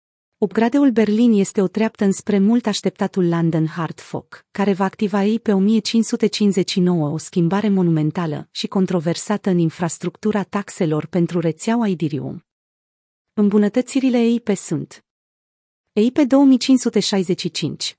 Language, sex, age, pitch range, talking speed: Romanian, female, 30-49, 180-220 Hz, 105 wpm